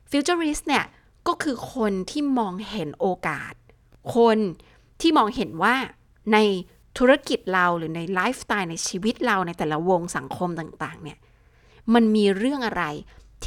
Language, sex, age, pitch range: Thai, female, 20-39, 170-235 Hz